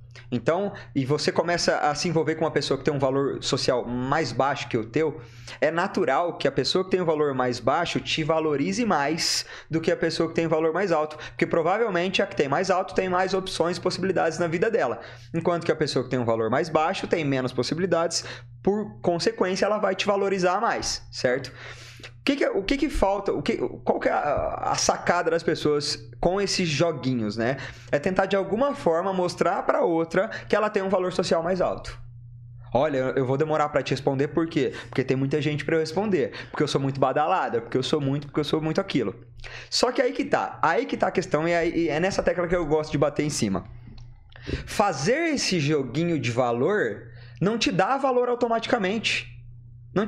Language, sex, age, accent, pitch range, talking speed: Portuguese, male, 20-39, Brazilian, 130-185 Hz, 220 wpm